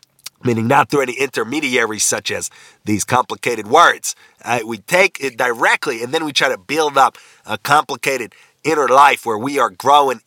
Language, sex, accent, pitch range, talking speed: English, male, American, 120-160 Hz, 175 wpm